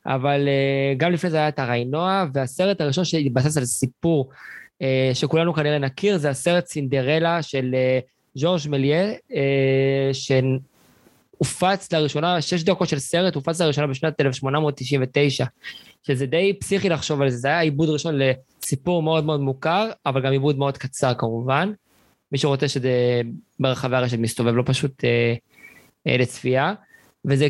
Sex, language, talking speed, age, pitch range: male, Hebrew, 145 wpm, 20-39, 130-160 Hz